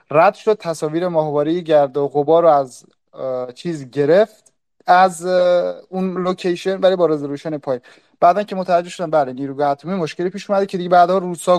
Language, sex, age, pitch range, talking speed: Persian, male, 30-49, 145-195 Hz, 170 wpm